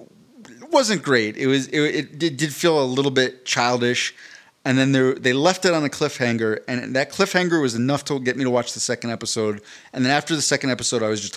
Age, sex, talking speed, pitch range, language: 30-49, male, 220 wpm, 110-135 Hz, English